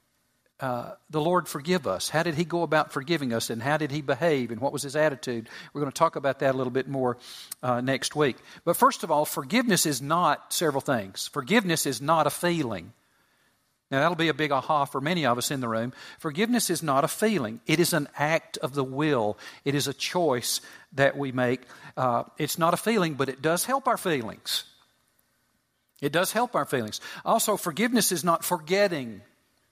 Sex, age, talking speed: male, 50-69, 205 wpm